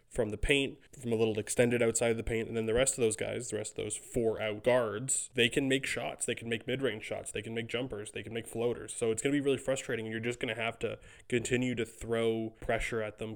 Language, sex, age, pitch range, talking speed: English, male, 20-39, 110-120 Hz, 275 wpm